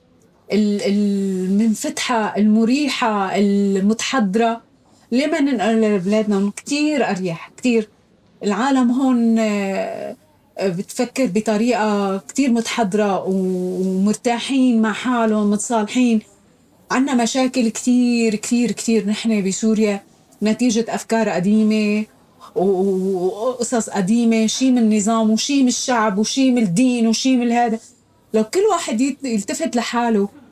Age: 30-49